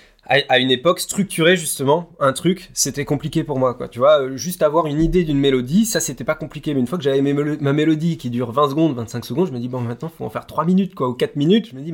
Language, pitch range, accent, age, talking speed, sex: French, 125-160 Hz, French, 20-39, 285 wpm, male